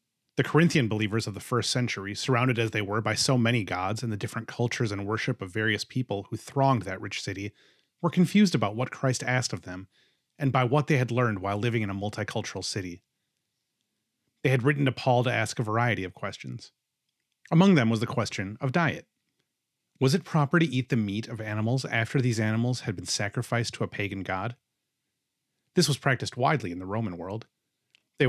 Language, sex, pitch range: English, male, 105-135 Hz